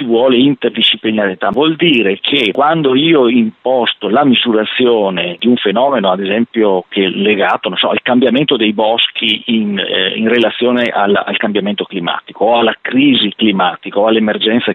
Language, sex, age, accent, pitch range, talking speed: Italian, male, 40-59, native, 105-130 Hz, 145 wpm